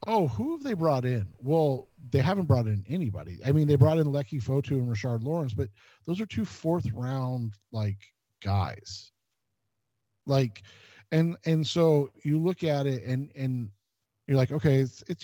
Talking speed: 175 wpm